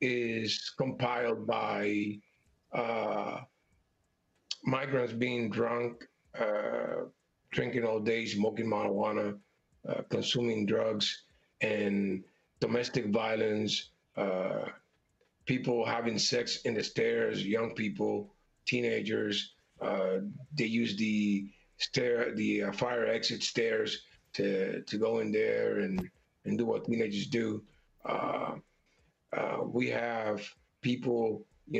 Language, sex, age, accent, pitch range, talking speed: English, male, 40-59, American, 105-120 Hz, 105 wpm